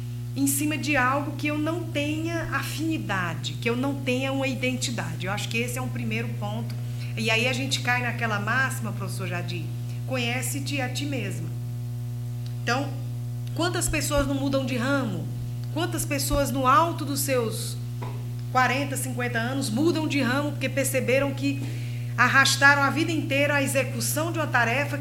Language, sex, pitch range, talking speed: Portuguese, female, 115-130 Hz, 160 wpm